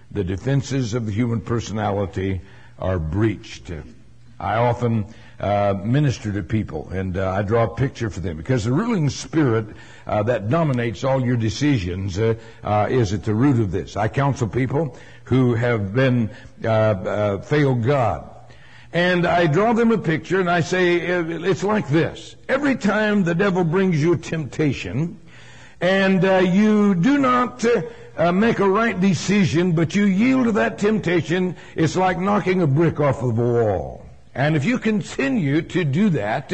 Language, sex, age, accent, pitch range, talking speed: English, male, 60-79, American, 120-200 Hz, 170 wpm